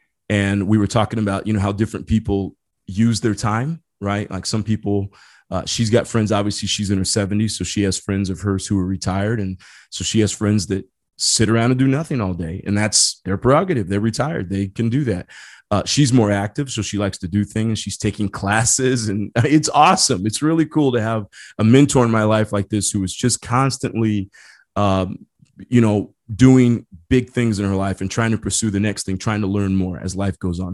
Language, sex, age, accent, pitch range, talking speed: English, male, 30-49, American, 100-125 Hz, 225 wpm